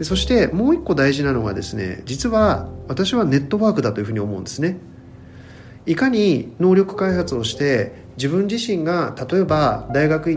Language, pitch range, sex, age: Japanese, 115-185 Hz, male, 40-59